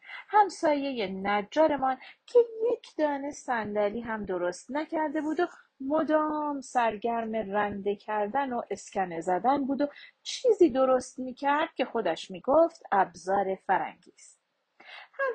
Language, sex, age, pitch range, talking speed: Persian, female, 40-59, 215-335 Hz, 115 wpm